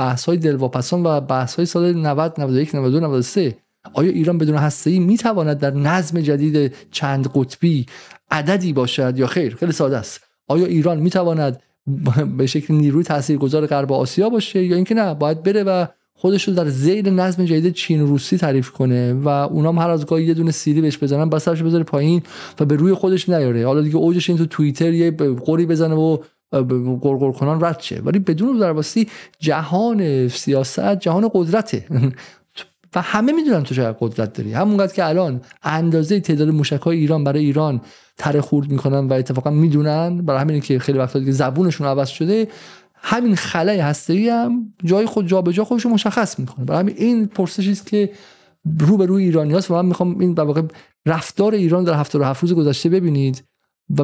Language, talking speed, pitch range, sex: Persian, 180 wpm, 140-180 Hz, male